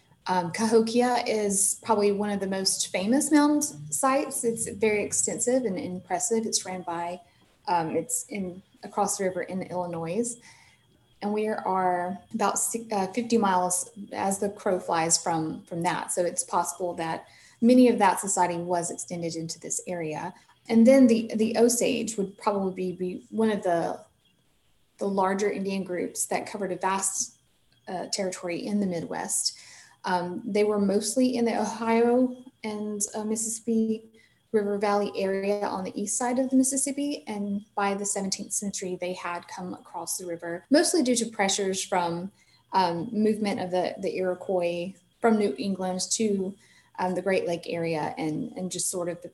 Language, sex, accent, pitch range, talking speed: English, female, American, 180-225 Hz, 165 wpm